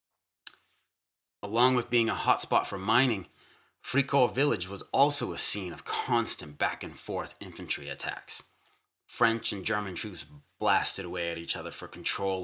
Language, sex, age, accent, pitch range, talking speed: English, male, 30-49, American, 90-115 Hz, 150 wpm